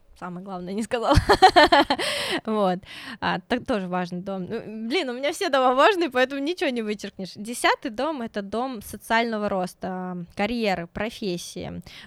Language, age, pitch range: Russian, 20-39, 185-225 Hz